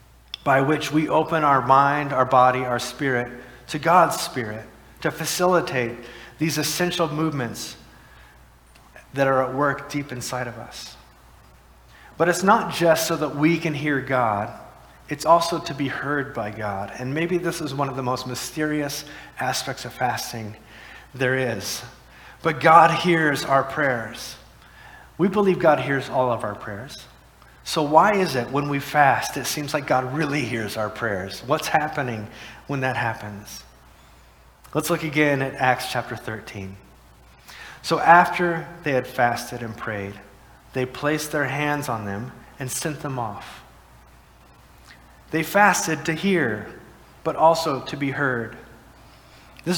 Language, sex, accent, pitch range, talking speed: English, male, American, 120-155 Hz, 150 wpm